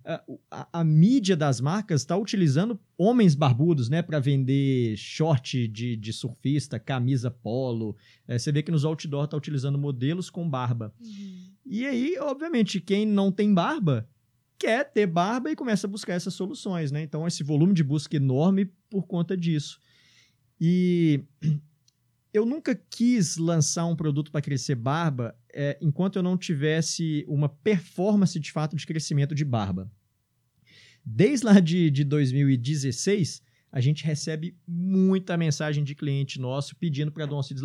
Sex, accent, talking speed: male, Brazilian, 155 wpm